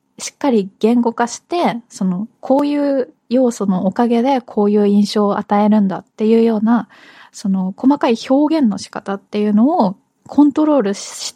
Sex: female